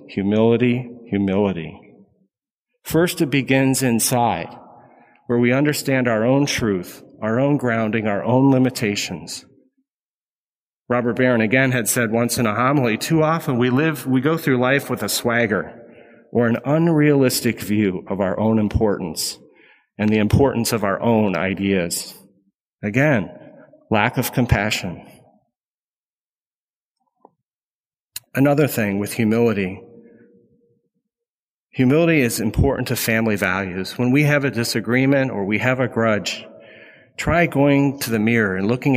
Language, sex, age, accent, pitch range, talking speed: English, male, 40-59, American, 105-140 Hz, 130 wpm